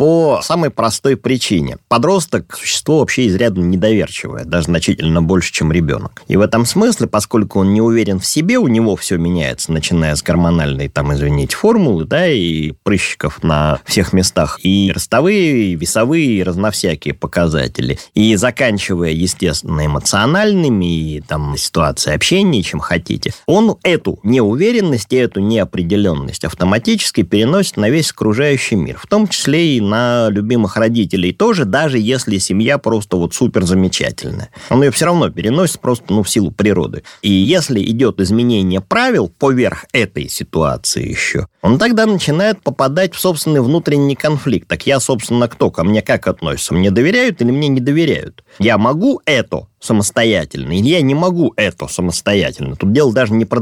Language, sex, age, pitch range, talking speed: Russian, male, 20-39, 90-135 Hz, 155 wpm